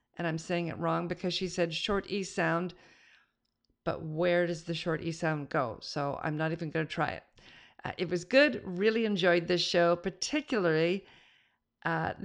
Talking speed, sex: 180 wpm, female